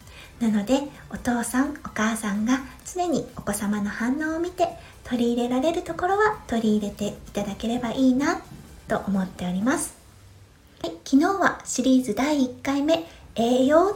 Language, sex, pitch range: Japanese, female, 220-320 Hz